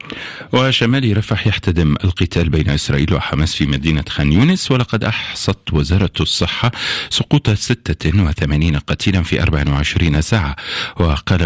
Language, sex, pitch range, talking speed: Arabic, male, 80-110 Hz, 115 wpm